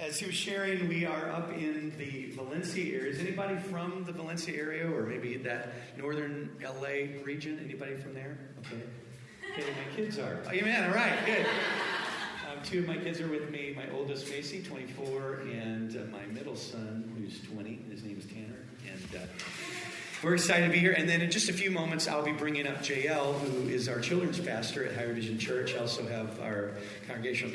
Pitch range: 115-160 Hz